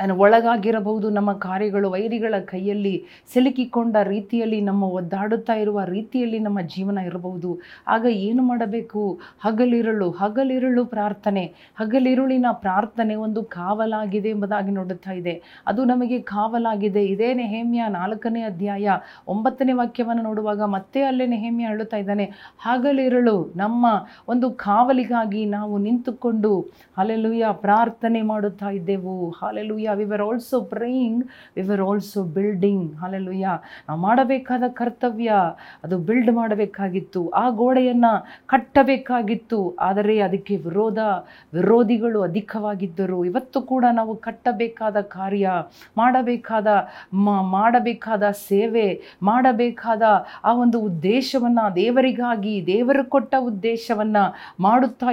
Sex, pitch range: female, 200-240 Hz